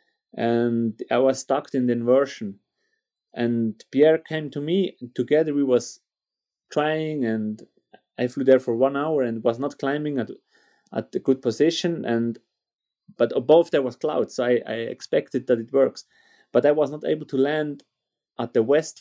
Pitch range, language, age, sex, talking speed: 125-160 Hz, English, 30-49, male, 175 wpm